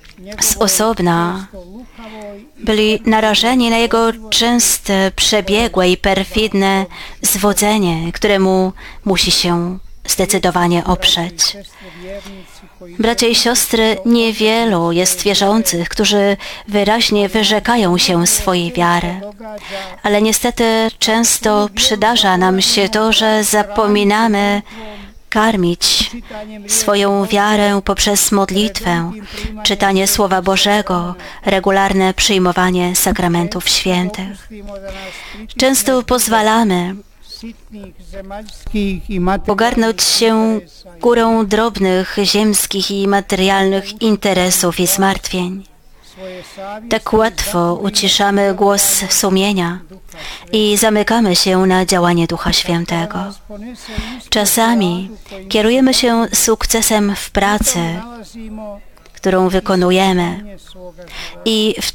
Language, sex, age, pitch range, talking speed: Polish, female, 30-49, 185-220 Hz, 80 wpm